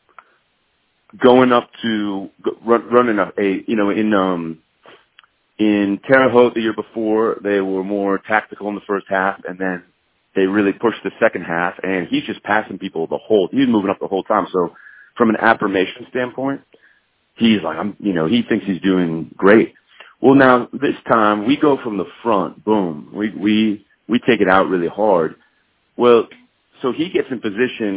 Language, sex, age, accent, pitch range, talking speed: English, male, 30-49, American, 95-115 Hz, 185 wpm